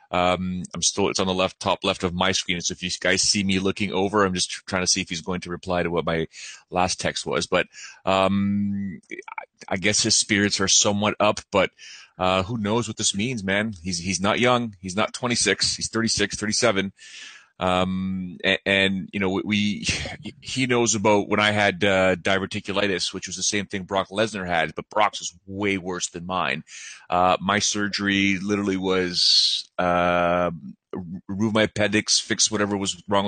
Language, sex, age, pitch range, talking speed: English, male, 30-49, 90-105 Hz, 190 wpm